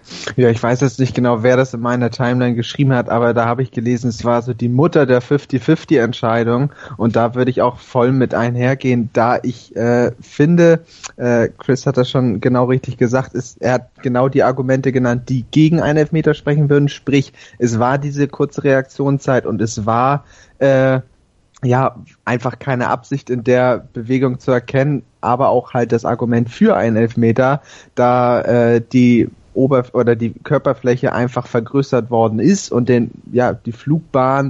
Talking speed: 175 wpm